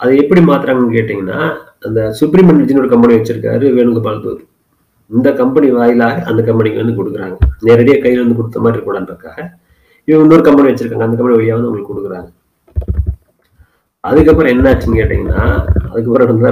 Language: Tamil